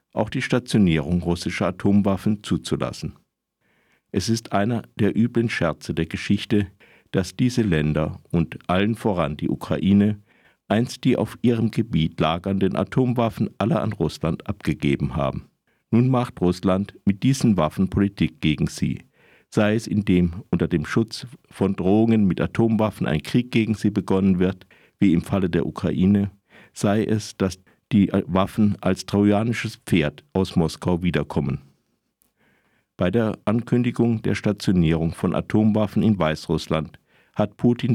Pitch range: 90-110 Hz